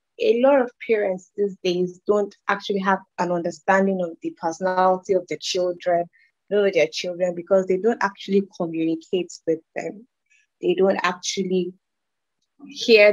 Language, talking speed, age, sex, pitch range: English, 140 wpm, 20-39, female, 170-210 Hz